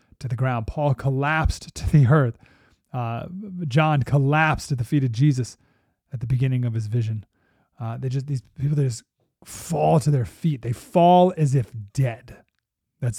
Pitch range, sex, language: 115-155 Hz, male, English